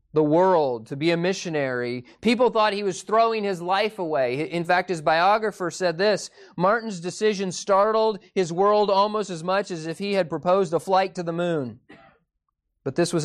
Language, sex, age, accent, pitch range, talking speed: English, male, 30-49, American, 135-185 Hz, 185 wpm